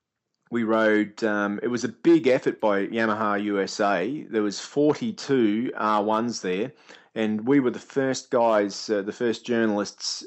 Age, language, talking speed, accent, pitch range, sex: 30-49, English, 150 wpm, Australian, 105-120 Hz, male